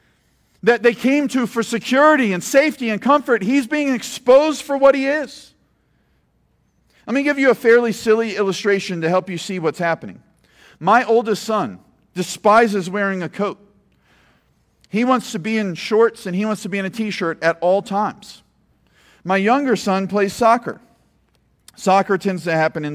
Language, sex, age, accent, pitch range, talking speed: English, male, 50-69, American, 185-230 Hz, 170 wpm